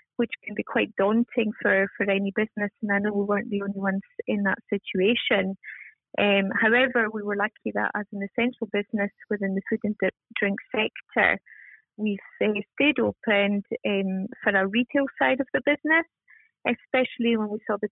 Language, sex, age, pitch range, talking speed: English, female, 30-49, 205-240 Hz, 180 wpm